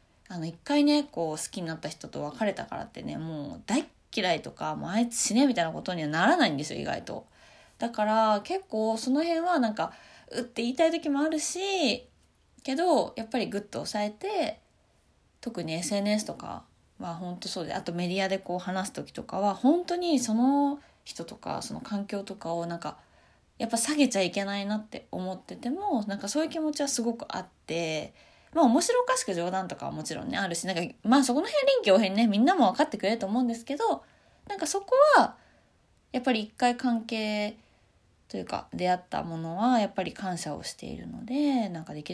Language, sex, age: Japanese, female, 20-39